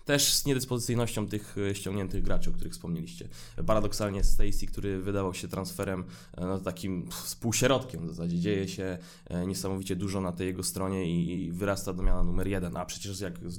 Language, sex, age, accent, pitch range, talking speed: Polish, male, 20-39, native, 90-110 Hz, 170 wpm